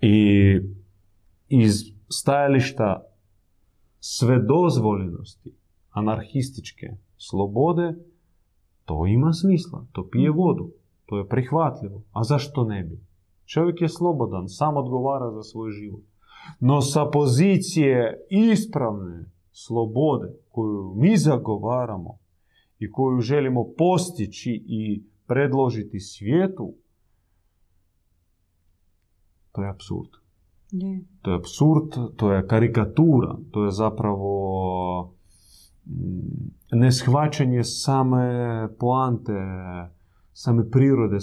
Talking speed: 85 wpm